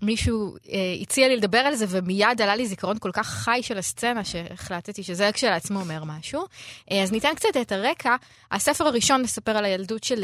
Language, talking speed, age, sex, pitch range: Hebrew, 190 wpm, 20-39, female, 185-245 Hz